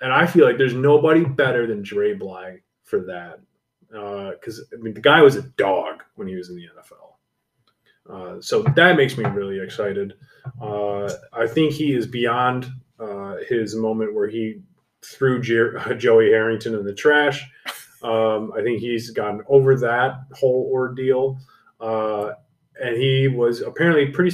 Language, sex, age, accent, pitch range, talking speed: English, male, 30-49, American, 110-150 Hz, 165 wpm